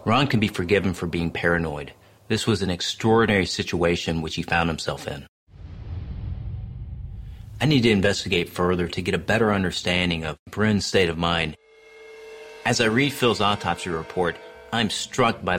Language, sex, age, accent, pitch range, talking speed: English, male, 40-59, American, 85-110 Hz, 160 wpm